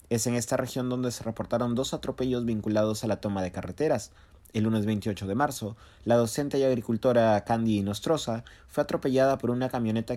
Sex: male